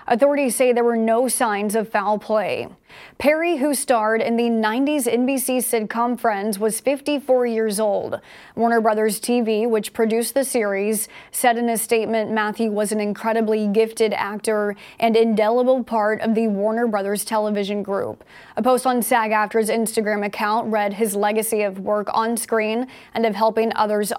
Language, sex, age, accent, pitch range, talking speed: English, female, 20-39, American, 215-245 Hz, 165 wpm